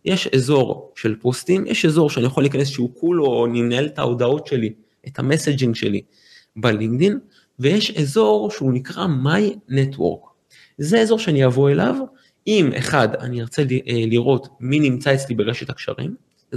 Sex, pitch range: male, 125-170 Hz